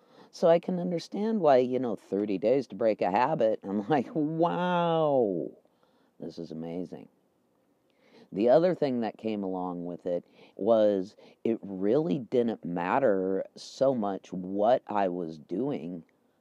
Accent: American